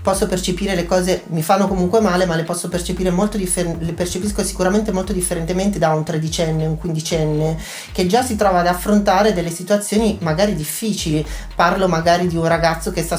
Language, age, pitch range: Italian, 40-59, 170-210 Hz